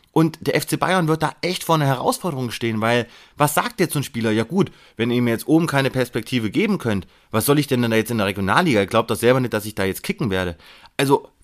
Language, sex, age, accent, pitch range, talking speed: German, male, 30-49, German, 110-155 Hz, 270 wpm